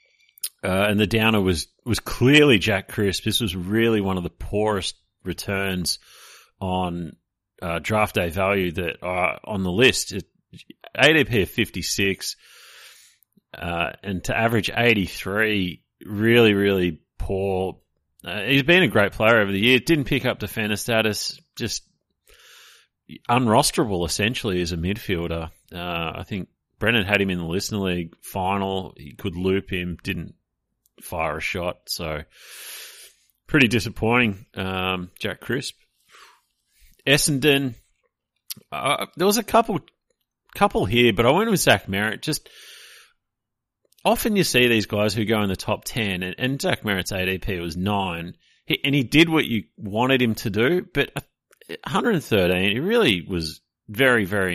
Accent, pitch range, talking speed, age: Australian, 90-120 Hz, 145 wpm, 30-49